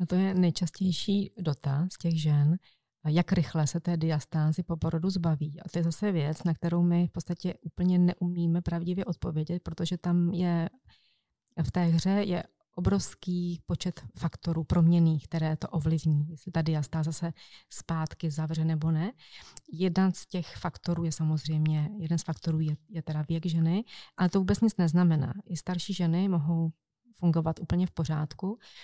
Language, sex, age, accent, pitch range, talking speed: Czech, female, 30-49, native, 160-180 Hz, 165 wpm